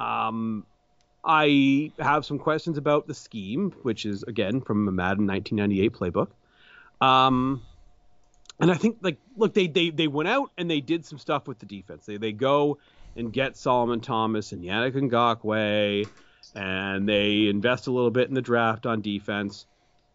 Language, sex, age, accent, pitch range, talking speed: English, male, 30-49, American, 115-150 Hz, 170 wpm